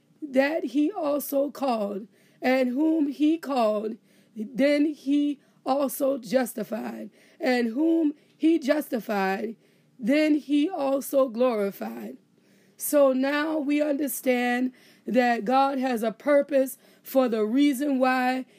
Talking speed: 105 wpm